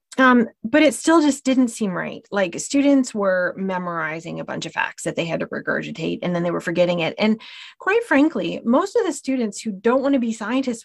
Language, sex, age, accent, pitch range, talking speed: English, female, 30-49, American, 190-265 Hz, 220 wpm